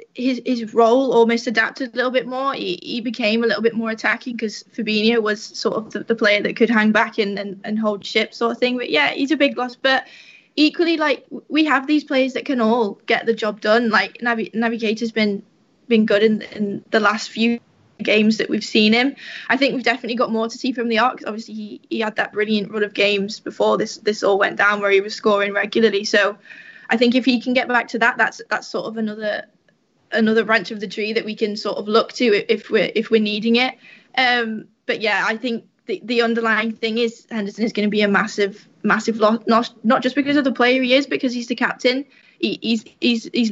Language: English